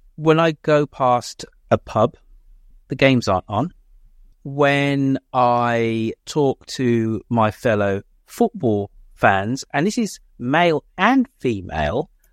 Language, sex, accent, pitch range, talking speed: English, male, British, 115-165 Hz, 115 wpm